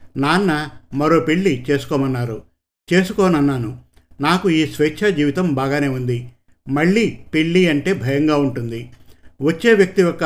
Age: 50-69